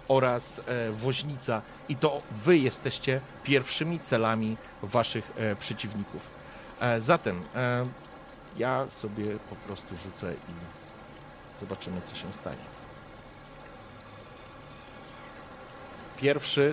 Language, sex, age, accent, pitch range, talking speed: Polish, male, 50-69, native, 105-155 Hz, 80 wpm